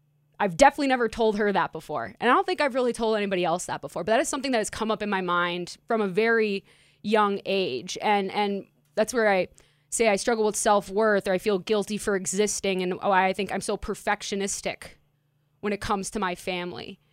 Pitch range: 175-220 Hz